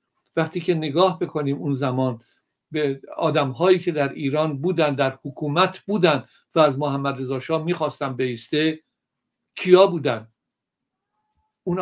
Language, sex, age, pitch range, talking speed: Persian, male, 60-79, 135-160 Hz, 125 wpm